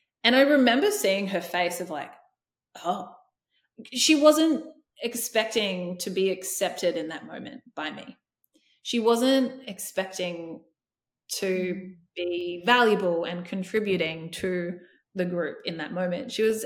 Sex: female